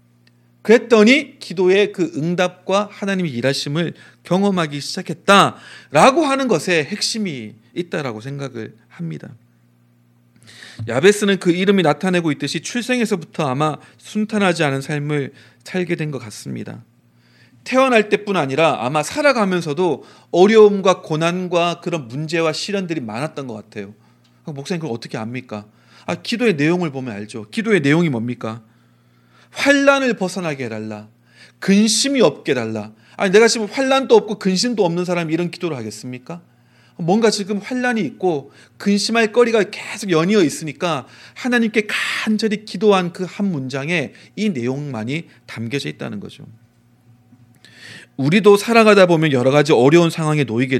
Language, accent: Korean, native